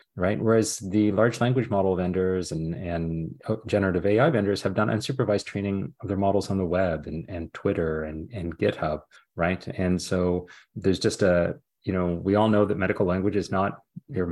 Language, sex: English, male